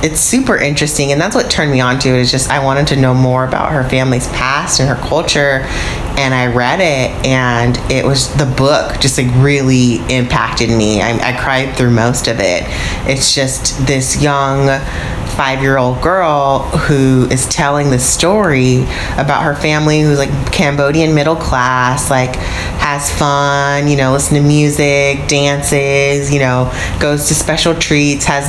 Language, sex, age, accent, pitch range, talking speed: English, female, 30-49, American, 125-145 Hz, 170 wpm